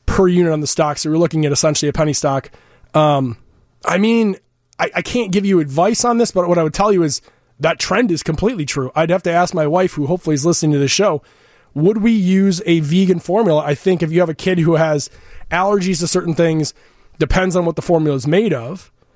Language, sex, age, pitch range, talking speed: English, male, 20-39, 145-180 Hz, 240 wpm